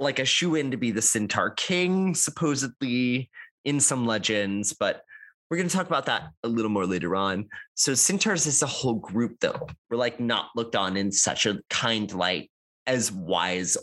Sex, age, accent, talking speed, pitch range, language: male, 20-39, American, 190 wpm, 100-135 Hz, English